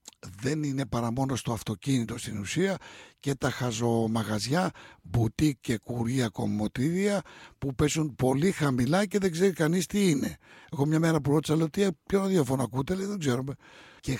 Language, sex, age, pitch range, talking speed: Greek, male, 60-79, 115-150 Hz, 160 wpm